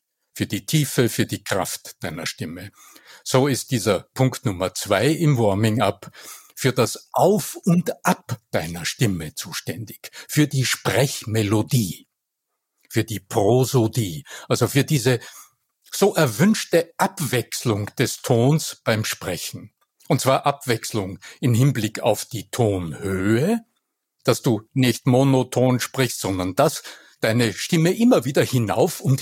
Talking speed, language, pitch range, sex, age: 125 wpm, German, 115-150 Hz, male, 60-79